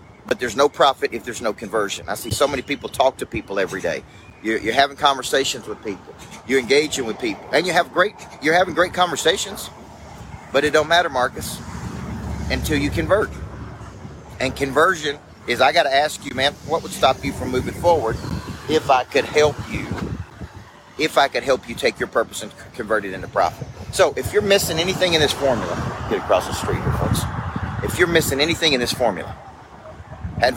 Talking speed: 195 wpm